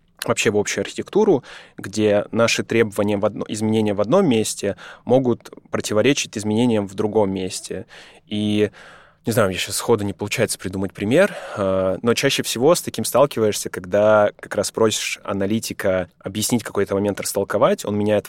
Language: Russian